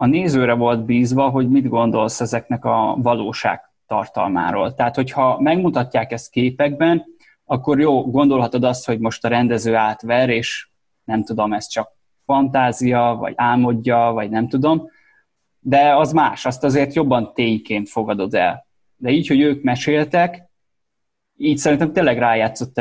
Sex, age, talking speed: male, 20-39, 140 wpm